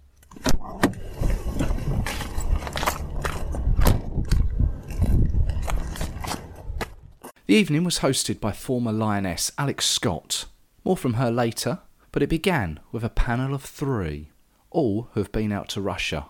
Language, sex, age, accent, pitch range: English, male, 40-59, British, 85-120 Hz